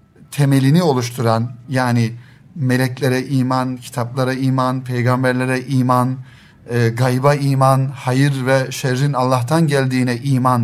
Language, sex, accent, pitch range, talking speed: Turkish, male, native, 125-150 Hz, 100 wpm